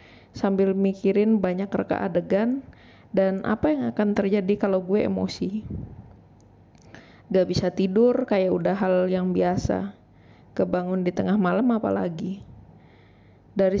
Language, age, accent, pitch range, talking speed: Indonesian, 20-39, native, 180-210 Hz, 115 wpm